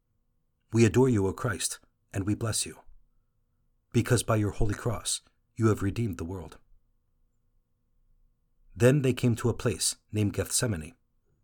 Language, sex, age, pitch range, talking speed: English, male, 50-69, 100-125 Hz, 140 wpm